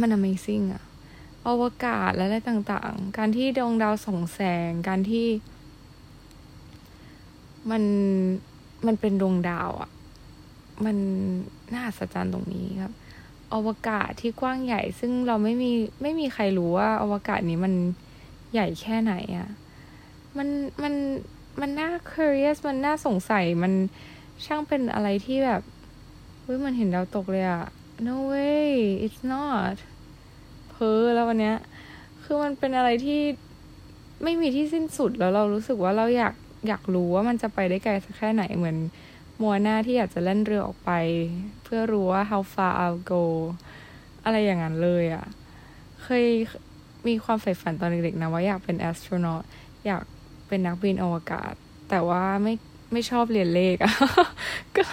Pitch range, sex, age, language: 185-245 Hz, female, 20-39, Thai